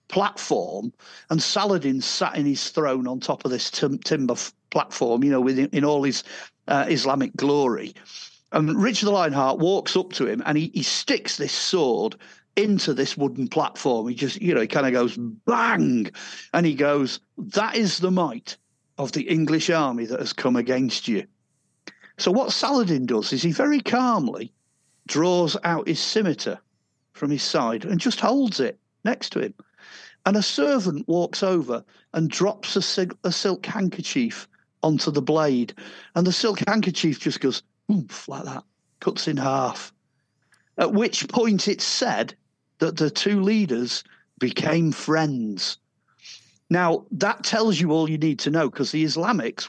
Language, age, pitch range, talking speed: English, 50-69, 140-205 Hz, 160 wpm